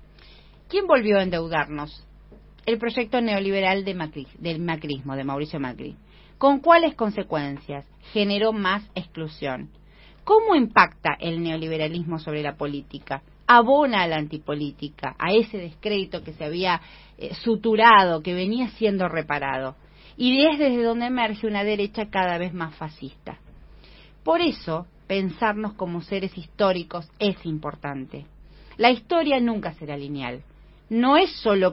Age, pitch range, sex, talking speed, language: 40-59, 155-215 Hz, female, 130 wpm, Spanish